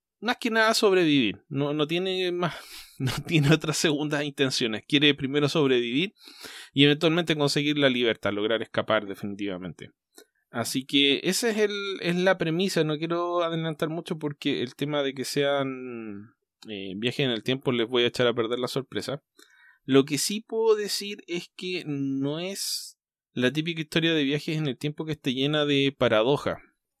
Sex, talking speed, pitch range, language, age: male, 170 wpm, 120-165 Hz, Spanish, 20-39